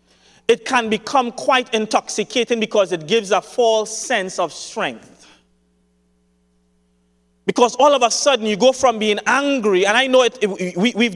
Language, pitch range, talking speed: English, 200-265 Hz, 145 wpm